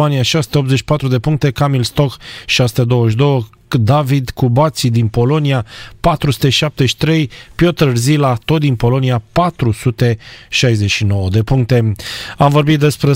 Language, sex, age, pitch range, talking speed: Romanian, male, 30-49, 125-155 Hz, 100 wpm